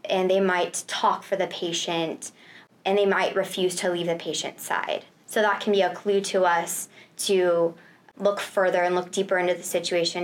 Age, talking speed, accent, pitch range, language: 20-39, 195 wpm, American, 175-200 Hz, English